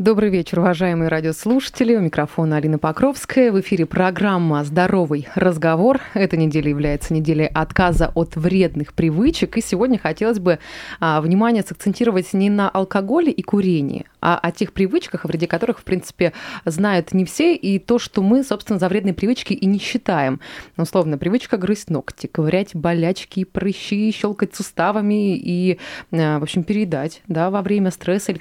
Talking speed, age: 160 wpm, 20-39